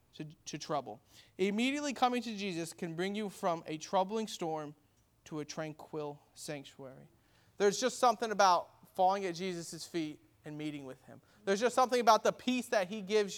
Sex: male